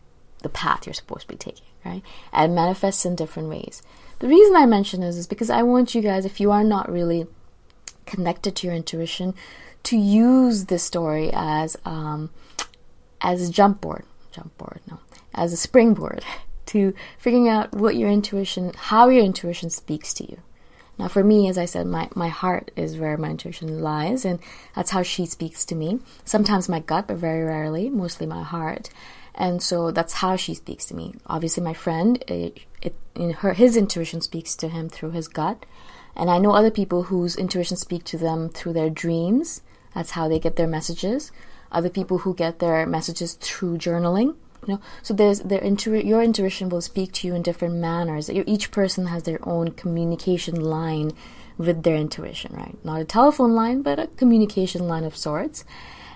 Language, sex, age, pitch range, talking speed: English, female, 20-39, 165-200 Hz, 190 wpm